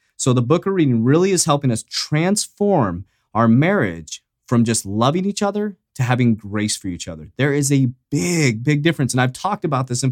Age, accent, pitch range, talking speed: 30-49, American, 115-165 Hz, 210 wpm